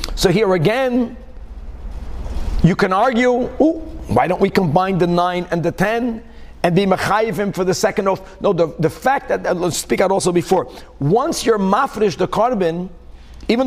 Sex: male